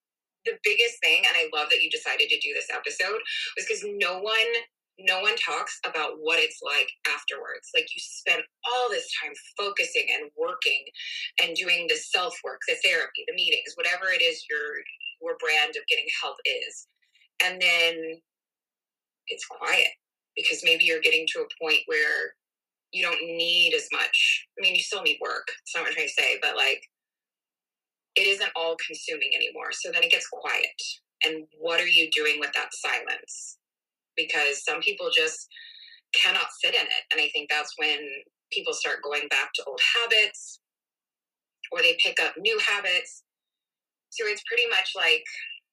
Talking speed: 170 wpm